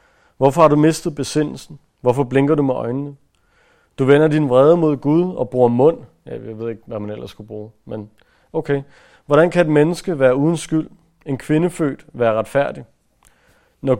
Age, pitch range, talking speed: 40-59, 115-150 Hz, 180 wpm